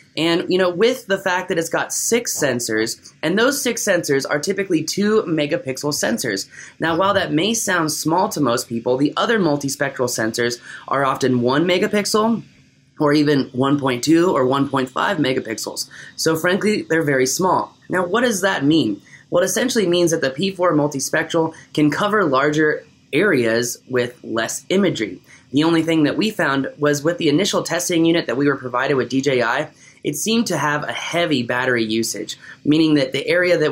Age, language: 20-39, English